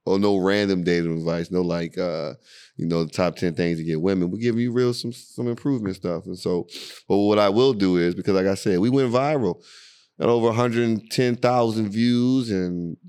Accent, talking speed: American, 205 wpm